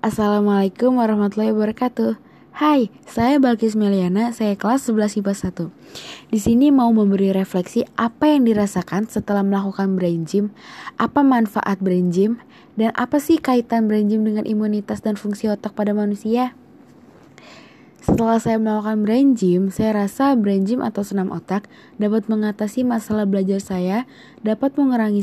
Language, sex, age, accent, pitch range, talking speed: Indonesian, female, 20-39, native, 200-235 Hz, 145 wpm